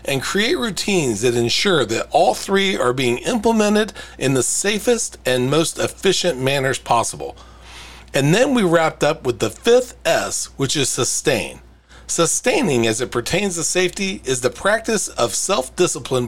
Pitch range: 120-180 Hz